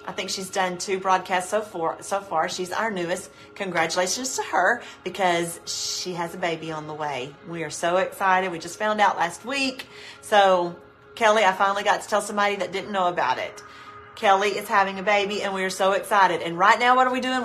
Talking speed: 220 wpm